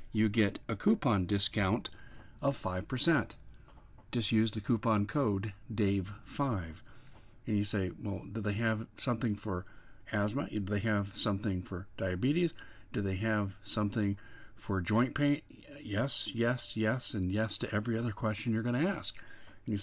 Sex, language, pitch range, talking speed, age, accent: male, English, 100-125 Hz, 155 wpm, 50-69, American